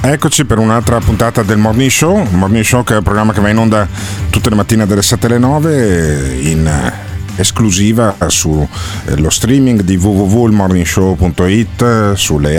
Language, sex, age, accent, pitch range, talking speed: Italian, male, 40-59, native, 85-115 Hz, 150 wpm